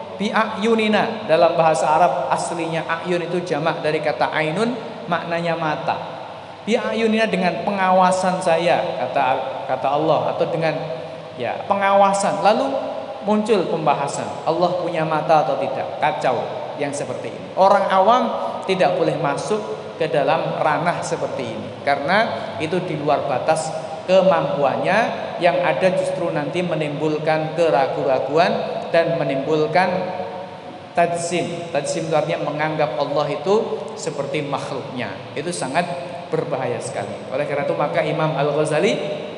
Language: Indonesian